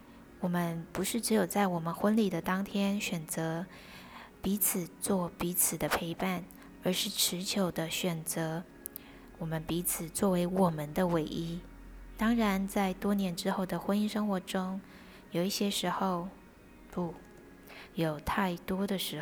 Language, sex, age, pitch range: Chinese, female, 20-39, 170-200 Hz